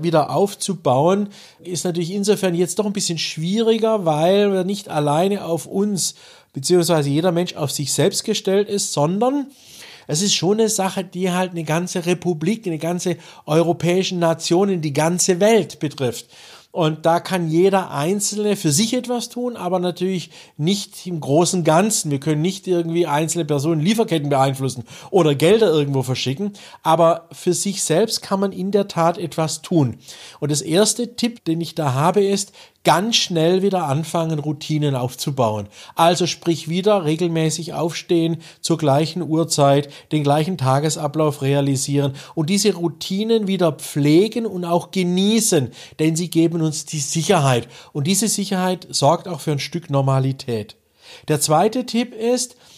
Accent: German